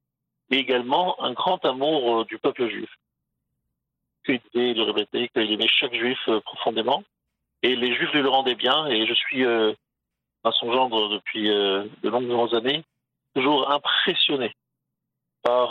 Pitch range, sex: 115-140 Hz, male